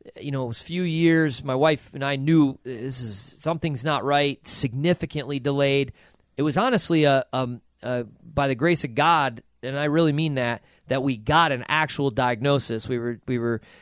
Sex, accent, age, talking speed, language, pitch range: male, American, 40-59, 195 wpm, English, 130-170 Hz